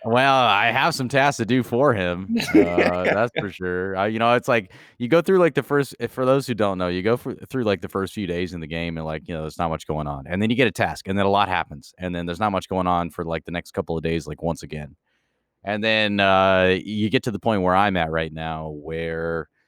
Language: English